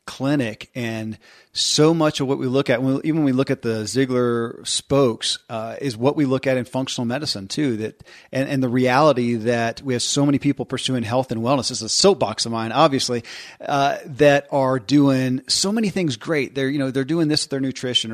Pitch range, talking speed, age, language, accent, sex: 120-145 Hz, 220 wpm, 40-59, English, American, male